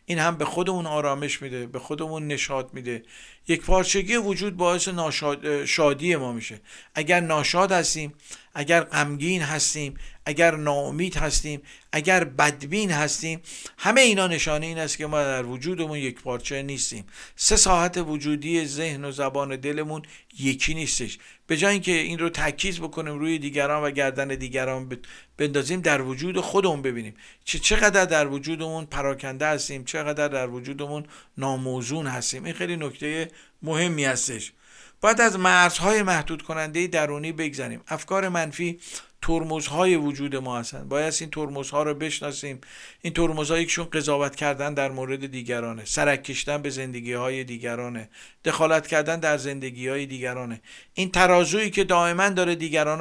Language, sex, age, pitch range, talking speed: Persian, male, 50-69, 135-170 Hz, 145 wpm